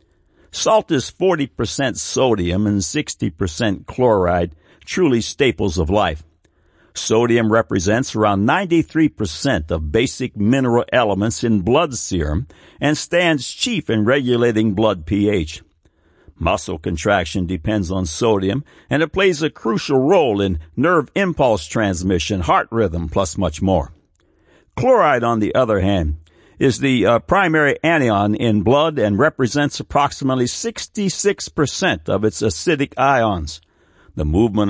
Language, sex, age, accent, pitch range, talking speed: English, male, 60-79, American, 95-135 Hz, 125 wpm